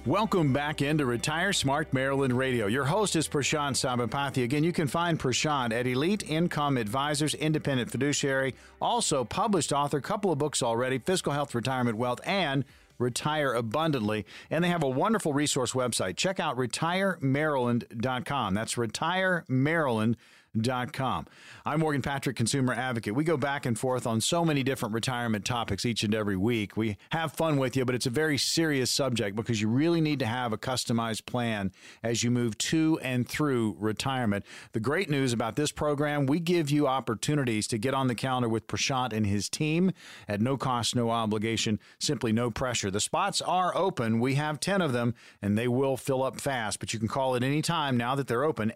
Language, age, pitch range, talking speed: English, 50-69, 115-150 Hz, 190 wpm